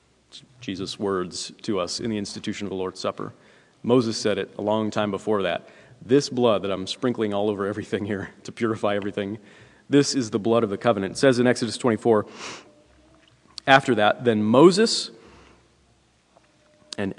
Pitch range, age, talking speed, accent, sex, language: 100-125 Hz, 40-59, 170 wpm, American, male, English